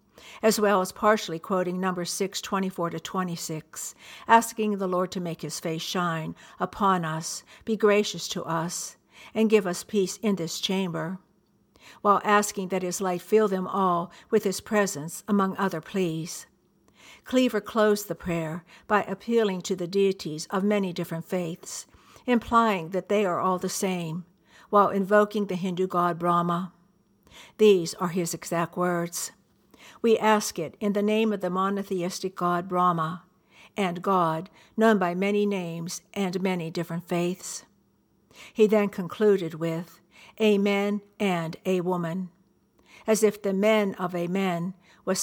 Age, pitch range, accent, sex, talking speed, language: 60-79, 175-205 Hz, American, female, 150 wpm, English